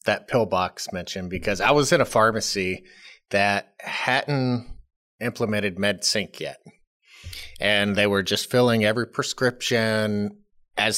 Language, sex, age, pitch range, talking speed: English, male, 30-49, 100-125 Hz, 125 wpm